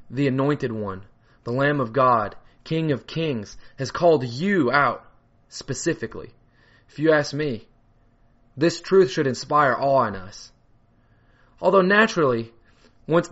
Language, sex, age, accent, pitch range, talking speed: English, male, 20-39, American, 115-145 Hz, 130 wpm